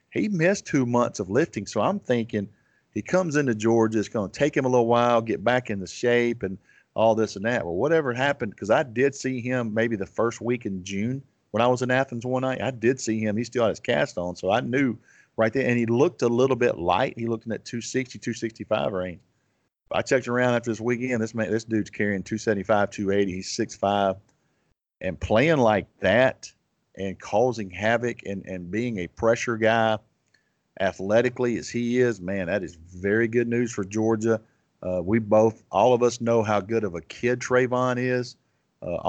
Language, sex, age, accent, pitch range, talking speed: English, male, 40-59, American, 105-125 Hz, 205 wpm